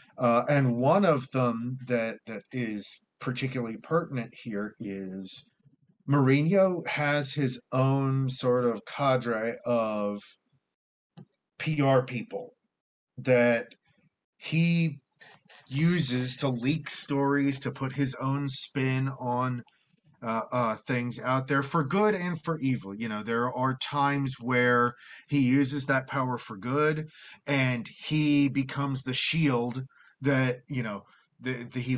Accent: American